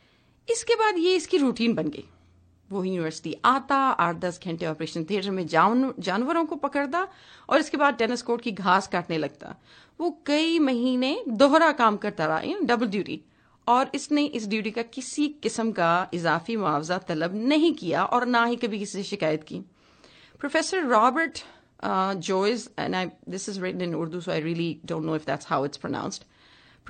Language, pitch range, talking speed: English, 185-285 Hz, 125 wpm